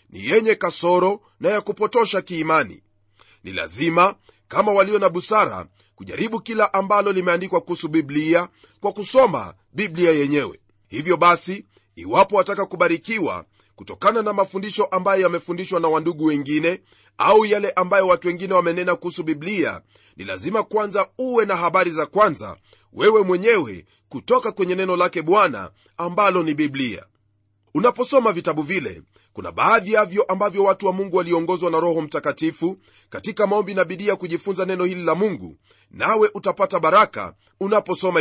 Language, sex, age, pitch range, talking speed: Swahili, male, 30-49, 160-205 Hz, 140 wpm